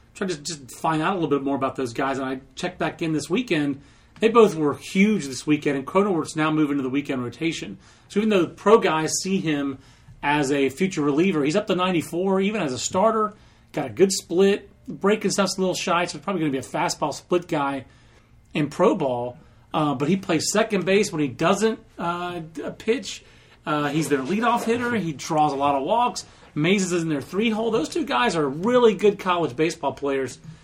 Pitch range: 145-190 Hz